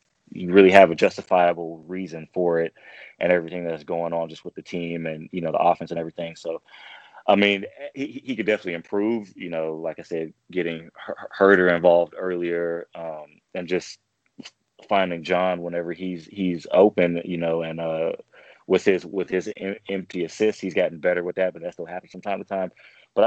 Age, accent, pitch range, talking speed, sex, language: 20-39, American, 85-95 Hz, 190 wpm, male, English